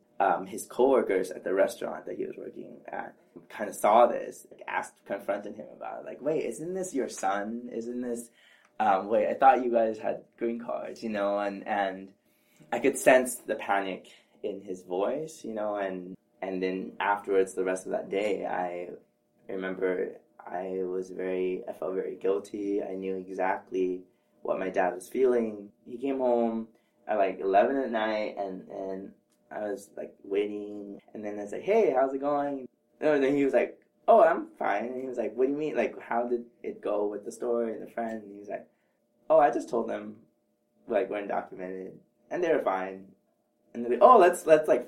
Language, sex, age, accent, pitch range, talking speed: English, male, 20-39, American, 95-130 Hz, 200 wpm